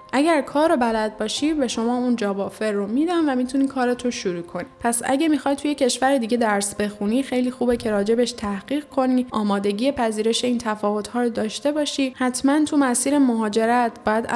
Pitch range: 215-270 Hz